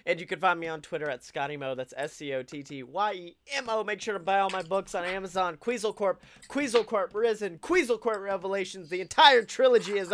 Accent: American